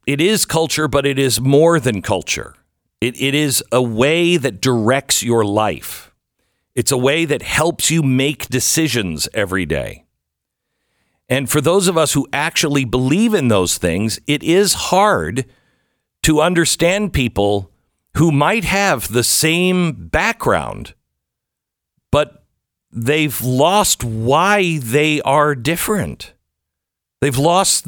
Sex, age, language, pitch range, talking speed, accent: male, 50-69, English, 110-160 Hz, 130 wpm, American